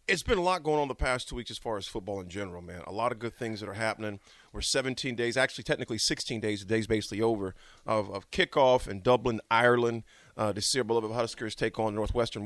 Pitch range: 110-140 Hz